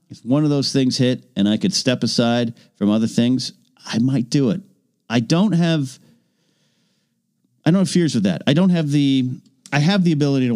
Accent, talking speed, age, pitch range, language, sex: American, 205 wpm, 40-59, 110-175 Hz, English, male